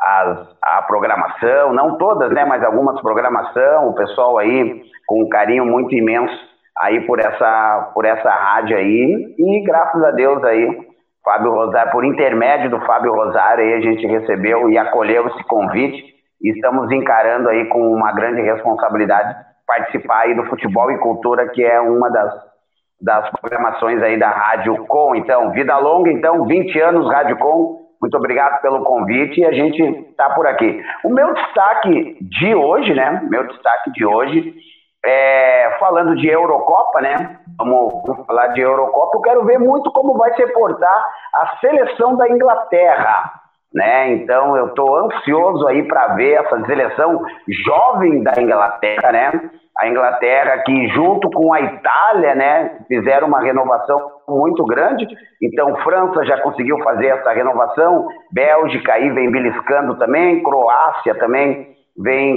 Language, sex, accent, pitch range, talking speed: Portuguese, male, Brazilian, 120-185 Hz, 155 wpm